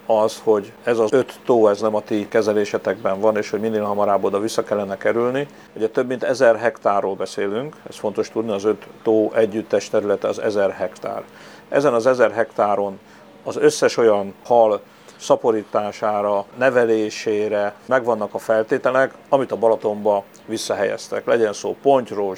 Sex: male